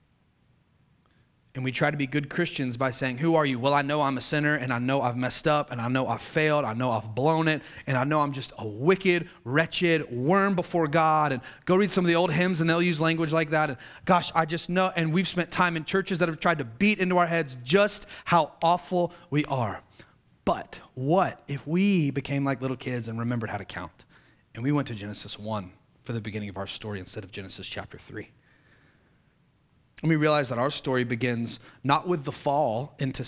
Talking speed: 225 wpm